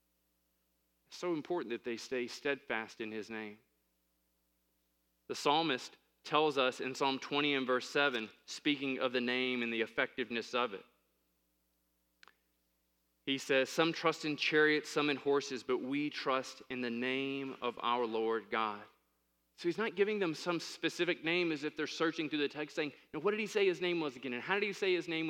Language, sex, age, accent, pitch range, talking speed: English, male, 20-39, American, 110-160 Hz, 185 wpm